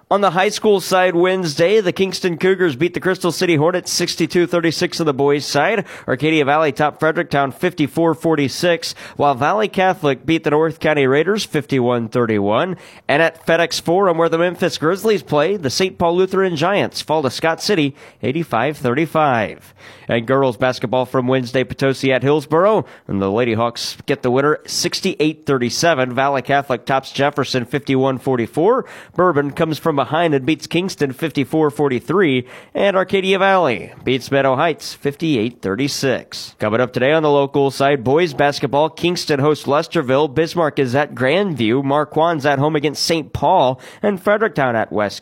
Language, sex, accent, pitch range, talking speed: English, male, American, 130-170 Hz, 150 wpm